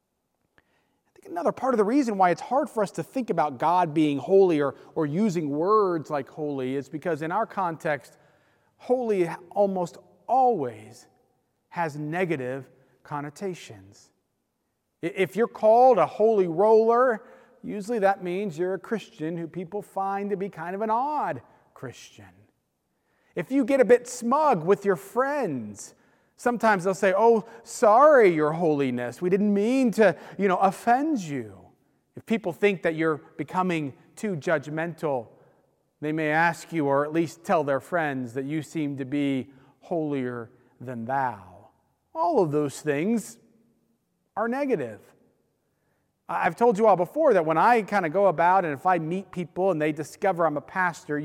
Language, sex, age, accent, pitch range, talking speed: English, male, 40-59, American, 150-205 Hz, 155 wpm